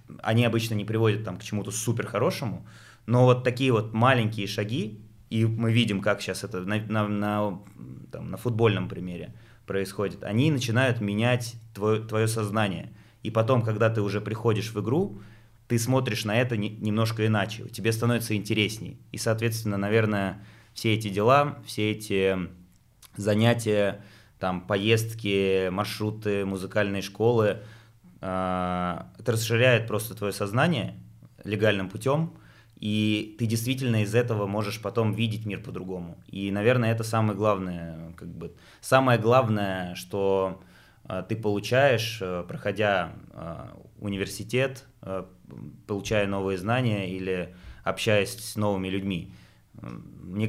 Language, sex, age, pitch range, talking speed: Russian, male, 20-39, 100-115 Hz, 120 wpm